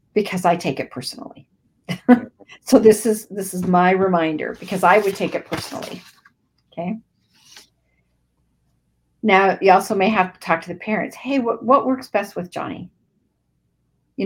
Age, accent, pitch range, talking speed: 50-69, American, 165-245 Hz, 155 wpm